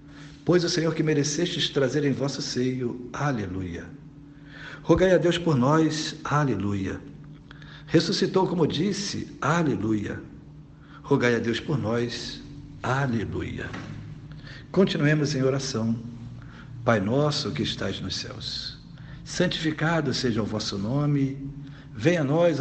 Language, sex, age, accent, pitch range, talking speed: Portuguese, male, 60-79, Brazilian, 120-150 Hz, 115 wpm